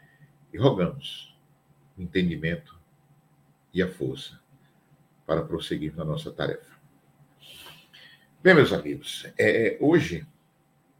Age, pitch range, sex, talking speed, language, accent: 50-69, 90-115 Hz, male, 85 wpm, Portuguese, Brazilian